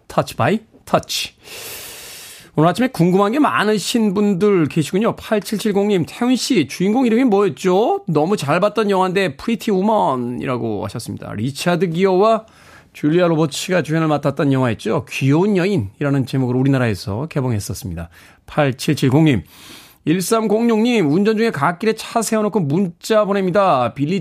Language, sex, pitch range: Korean, male, 140-215 Hz